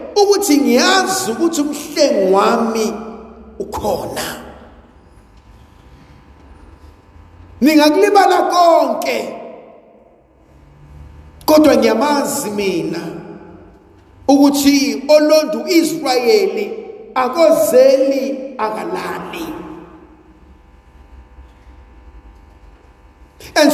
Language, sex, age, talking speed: English, male, 50-69, 50 wpm